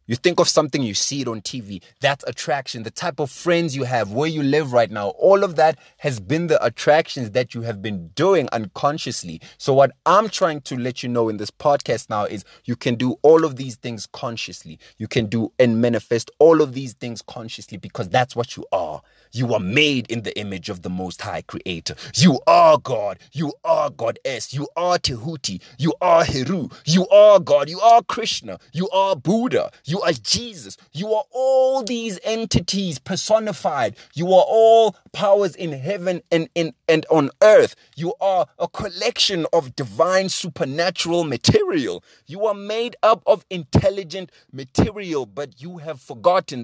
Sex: male